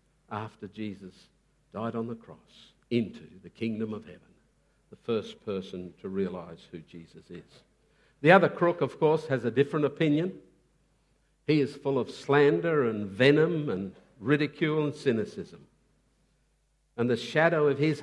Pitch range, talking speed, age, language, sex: 115-145 Hz, 145 wpm, 60-79, English, male